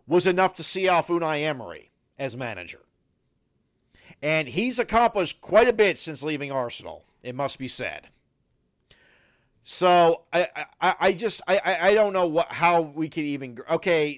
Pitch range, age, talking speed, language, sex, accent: 145-185 Hz, 50-69, 155 wpm, English, male, American